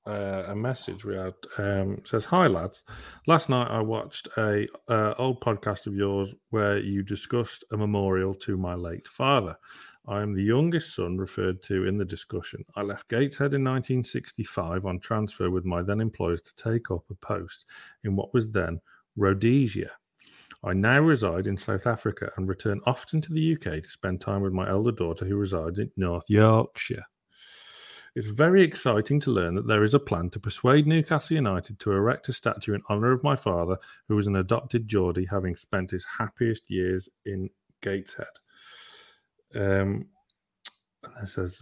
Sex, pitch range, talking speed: male, 95-115 Hz, 175 wpm